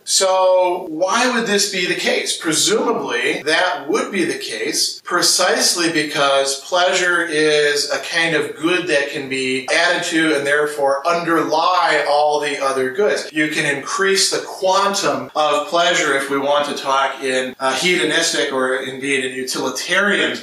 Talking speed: 155 wpm